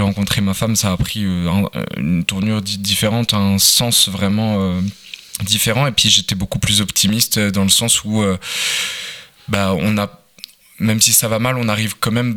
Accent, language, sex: French, French, male